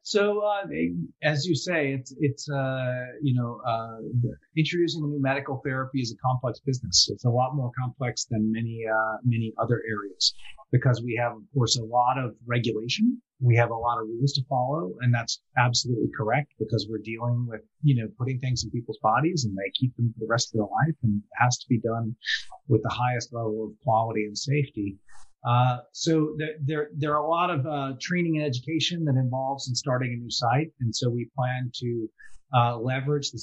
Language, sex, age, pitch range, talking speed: English, male, 30-49, 115-140 Hz, 210 wpm